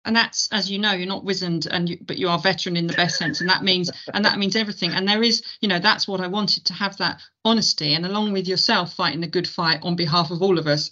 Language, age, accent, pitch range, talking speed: English, 40-59, British, 170-205 Hz, 285 wpm